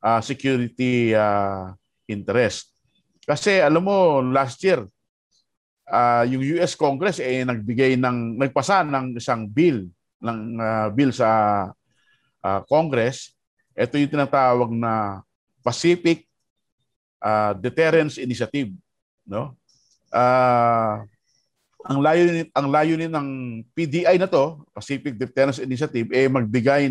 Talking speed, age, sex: 110 wpm, 50-69, male